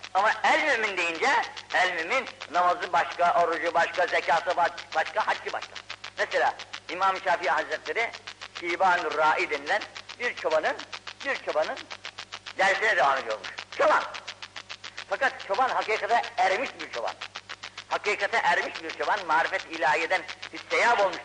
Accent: native